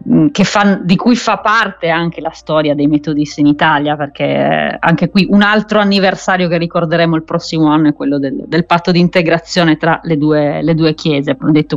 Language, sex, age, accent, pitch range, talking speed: Italian, female, 30-49, native, 155-180 Hz, 195 wpm